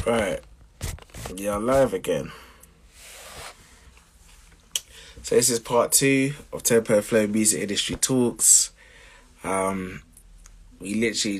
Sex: male